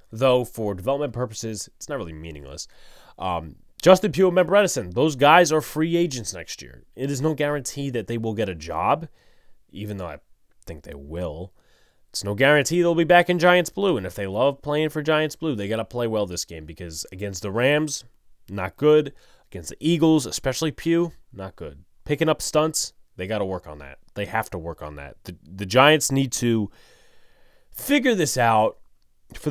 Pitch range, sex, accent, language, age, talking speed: 95-145 Hz, male, American, English, 20-39, 200 wpm